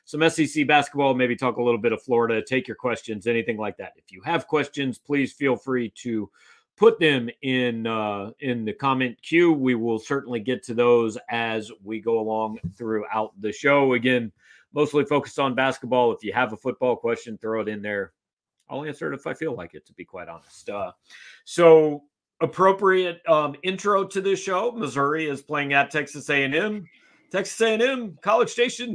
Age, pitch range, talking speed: 40-59, 120-155 Hz, 185 wpm